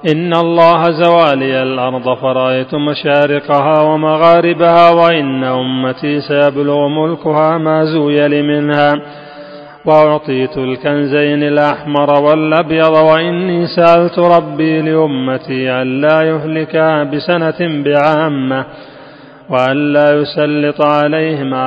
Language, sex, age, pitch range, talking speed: Arabic, male, 40-59, 145-160 Hz, 80 wpm